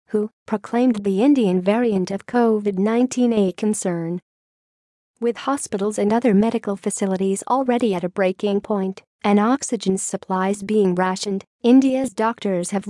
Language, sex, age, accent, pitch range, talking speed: English, female, 40-59, American, 195-240 Hz, 130 wpm